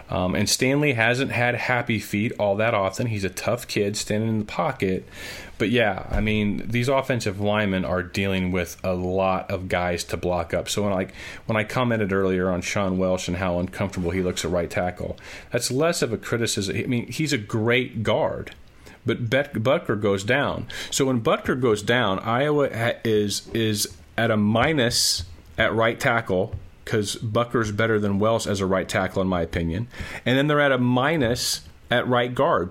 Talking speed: 195 wpm